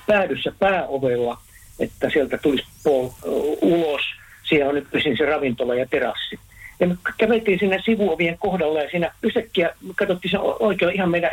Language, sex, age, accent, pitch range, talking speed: Finnish, male, 60-79, native, 135-190 Hz, 150 wpm